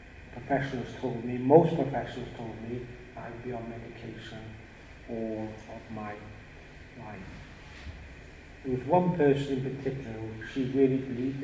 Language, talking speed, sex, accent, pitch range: English, 125 wpm, male, British, 90-130 Hz